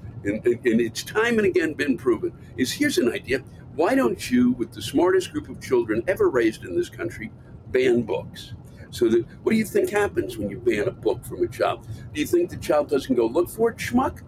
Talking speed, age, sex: 225 wpm, 60-79, male